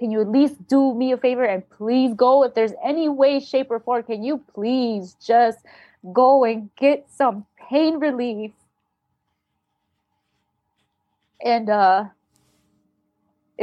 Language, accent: English, American